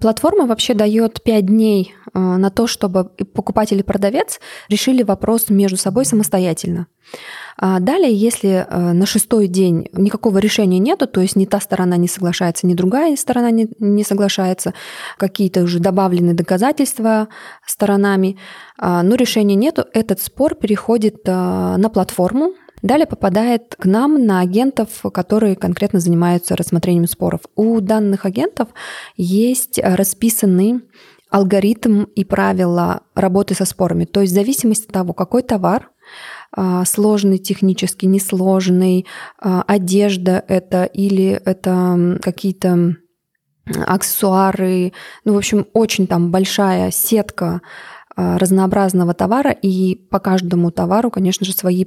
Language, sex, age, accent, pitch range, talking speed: Russian, female, 20-39, native, 185-220 Hz, 120 wpm